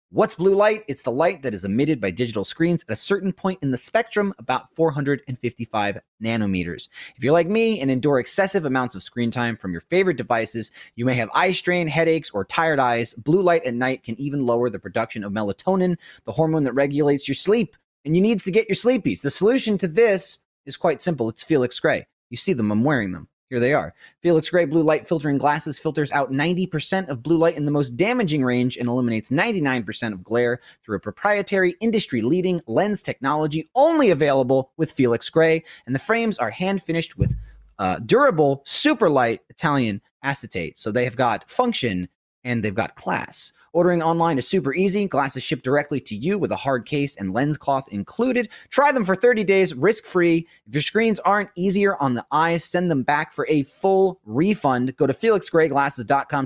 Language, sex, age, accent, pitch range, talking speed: English, male, 30-49, American, 130-190 Hz, 200 wpm